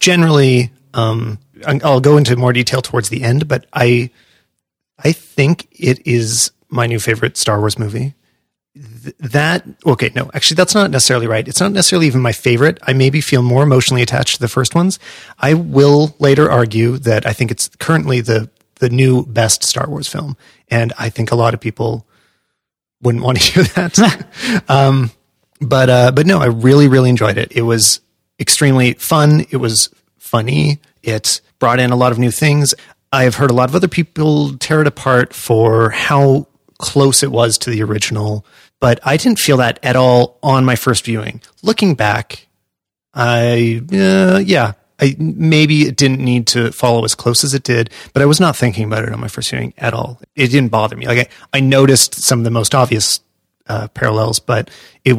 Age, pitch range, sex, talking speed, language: 30-49, 115-145 Hz, male, 190 wpm, English